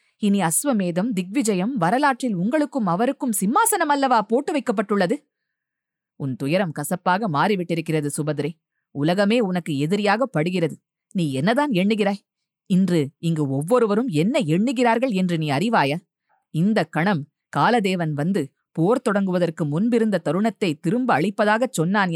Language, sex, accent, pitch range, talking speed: Tamil, female, native, 165-225 Hz, 110 wpm